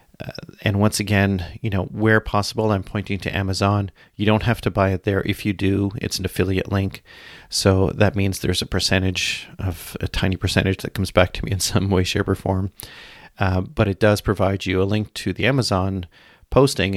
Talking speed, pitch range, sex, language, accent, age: 210 wpm, 95-105 Hz, male, English, American, 40-59